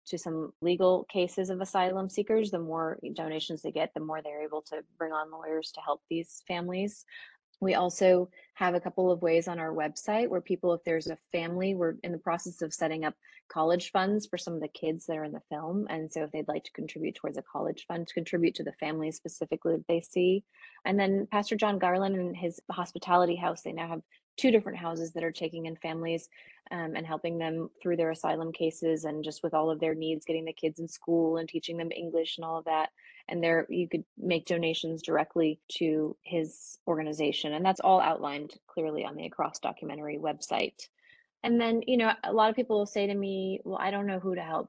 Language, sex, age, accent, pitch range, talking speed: English, female, 20-39, American, 160-185 Hz, 225 wpm